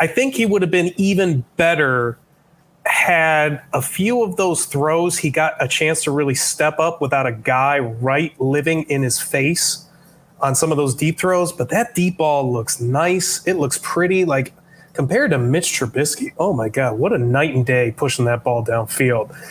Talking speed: 190 wpm